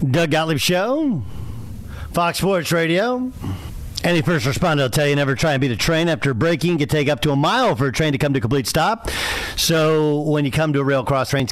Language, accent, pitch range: English, American, 120-165 Hz